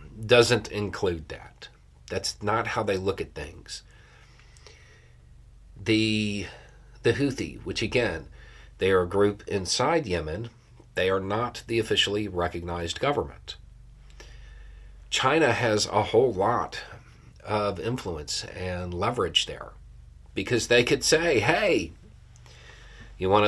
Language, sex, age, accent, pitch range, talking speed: English, male, 40-59, American, 90-115 Hz, 115 wpm